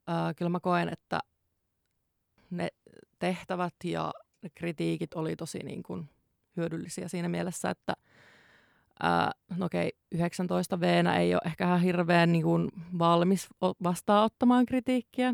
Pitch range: 165-185 Hz